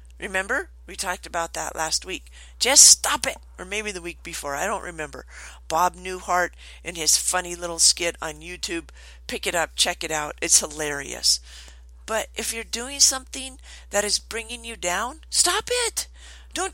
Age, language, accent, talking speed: 50-69, English, American, 170 wpm